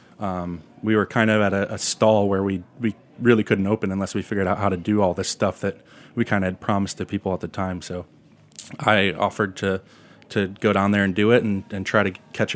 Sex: male